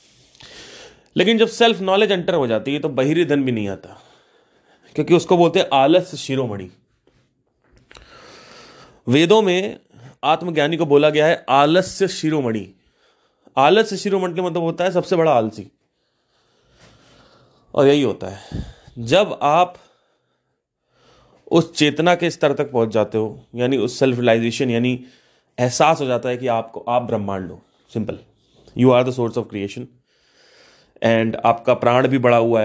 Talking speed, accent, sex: 140 wpm, native, male